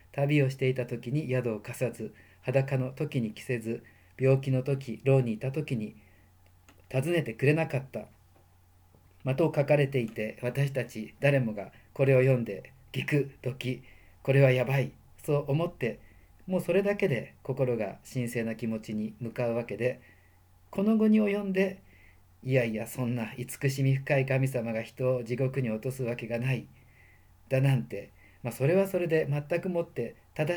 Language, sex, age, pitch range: Japanese, male, 40-59, 115-145 Hz